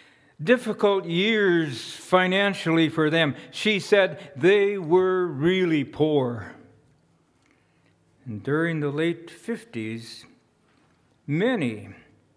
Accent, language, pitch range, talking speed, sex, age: American, English, 130-175 Hz, 80 wpm, male, 60-79